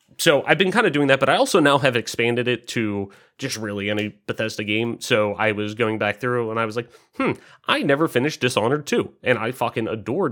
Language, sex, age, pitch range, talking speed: English, male, 30-49, 105-125 Hz, 235 wpm